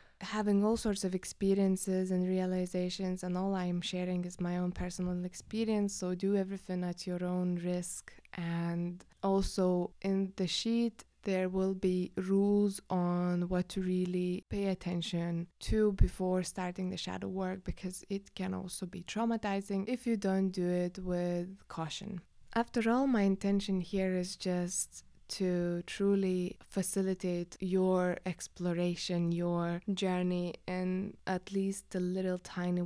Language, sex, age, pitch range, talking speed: English, female, 20-39, 175-195 Hz, 140 wpm